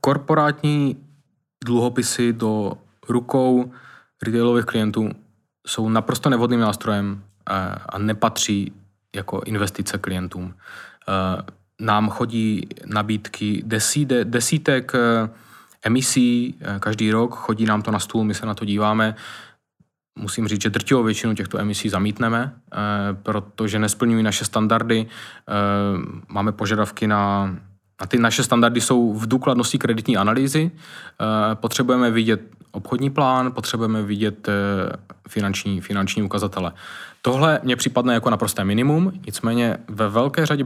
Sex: male